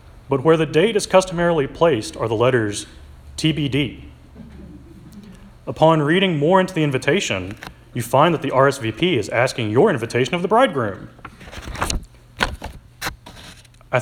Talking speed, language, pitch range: 130 wpm, English, 115-150 Hz